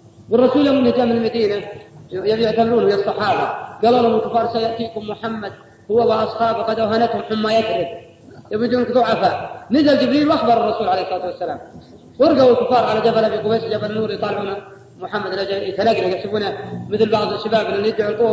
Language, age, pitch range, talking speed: Arabic, 40-59, 220-265 Hz, 150 wpm